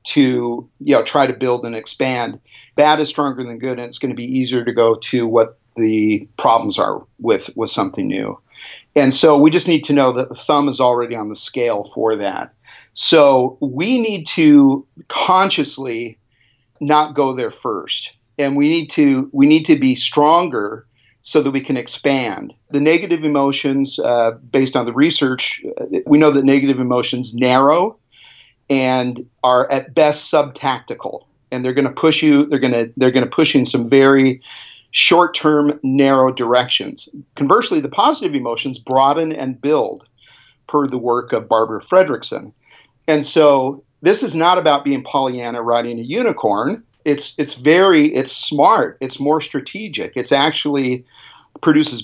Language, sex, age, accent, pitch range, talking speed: English, male, 50-69, American, 125-155 Hz, 165 wpm